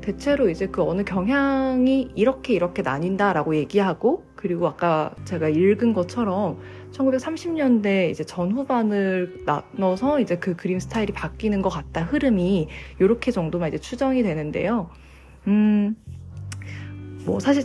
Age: 20-39